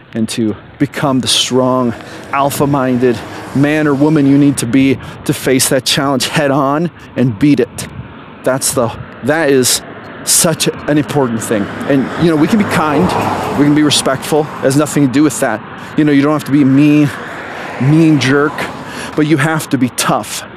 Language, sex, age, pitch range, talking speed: English, male, 30-49, 120-145 Hz, 185 wpm